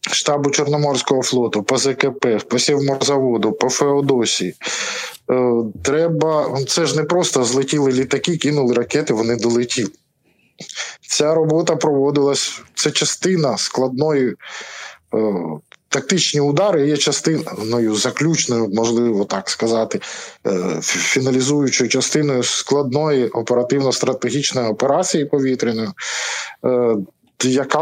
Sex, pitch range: male, 120-145 Hz